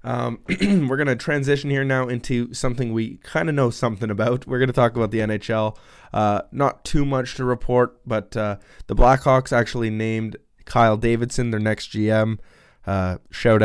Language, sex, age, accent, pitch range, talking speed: English, male, 20-39, American, 105-125 Hz, 180 wpm